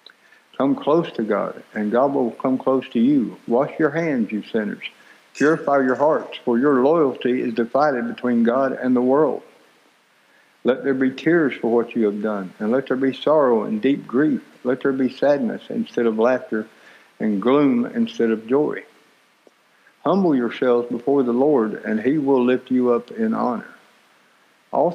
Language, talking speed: English, 175 wpm